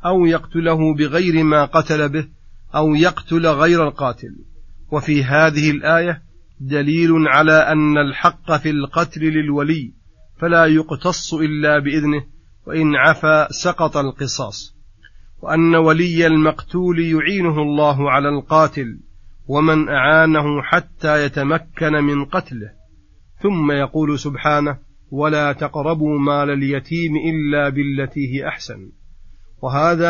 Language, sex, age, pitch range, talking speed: Arabic, male, 40-59, 145-160 Hz, 105 wpm